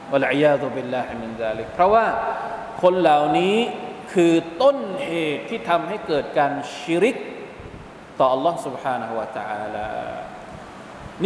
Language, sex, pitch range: Thai, male, 145-165 Hz